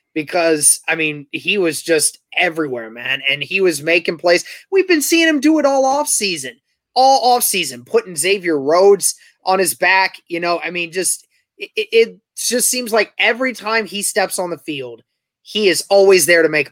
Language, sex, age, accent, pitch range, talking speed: English, male, 20-39, American, 165-220 Hz, 185 wpm